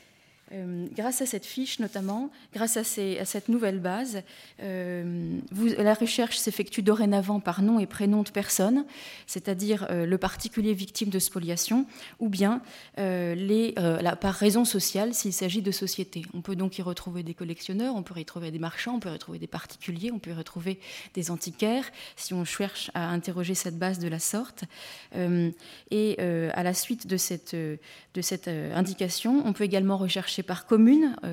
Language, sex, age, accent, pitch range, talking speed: French, female, 20-39, French, 180-220 Hz, 180 wpm